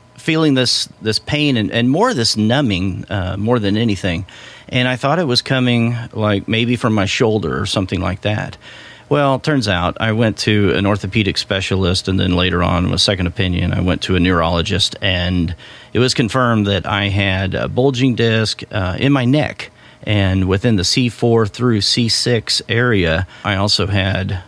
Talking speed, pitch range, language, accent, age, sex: 185 wpm, 95-120 Hz, English, American, 40-59, male